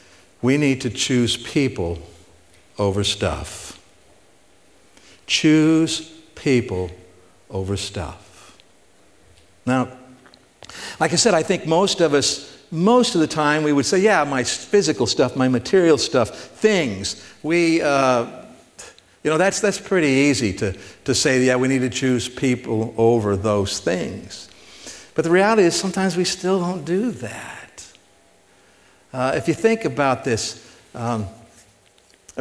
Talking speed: 135 wpm